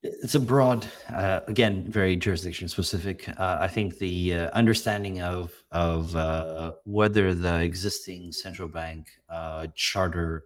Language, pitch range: English, 80-95 Hz